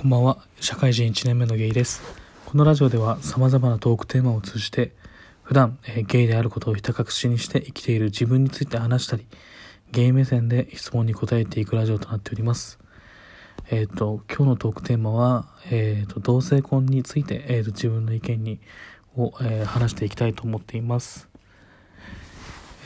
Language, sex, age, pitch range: Japanese, male, 20-39, 105-120 Hz